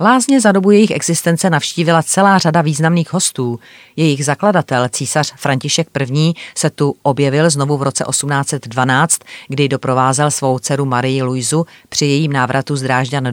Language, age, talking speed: Czech, 40-59, 145 wpm